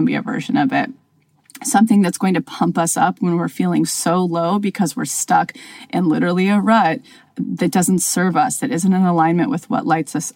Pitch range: 170-250 Hz